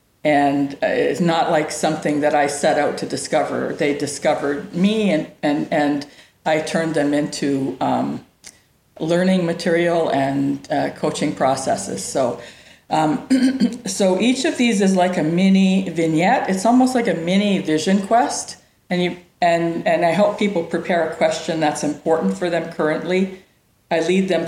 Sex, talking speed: female, 155 wpm